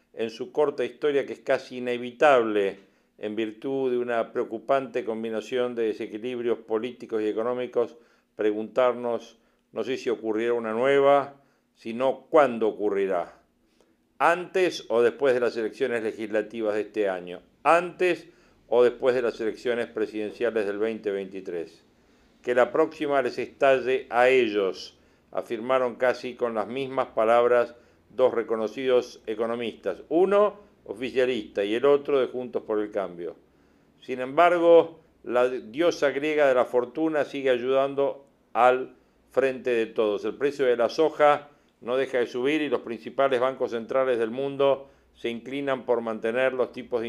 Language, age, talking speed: Spanish, 50-69, 140 wpm